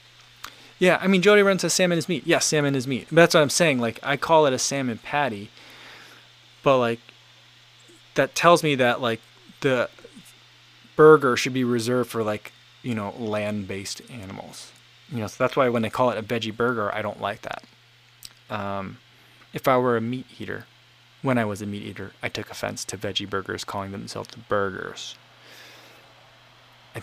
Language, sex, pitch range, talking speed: English, male, 105-145 Hz, 180 wpm